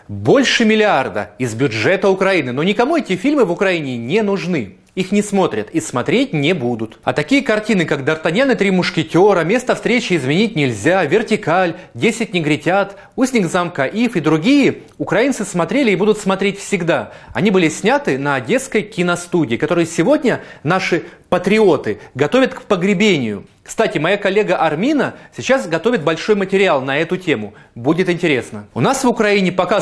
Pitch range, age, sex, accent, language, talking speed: 150-215 Hz, 30-49, male, native, Russian, 155 wpm